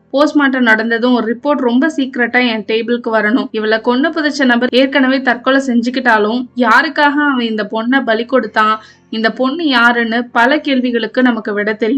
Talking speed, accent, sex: 70 wpm, native, female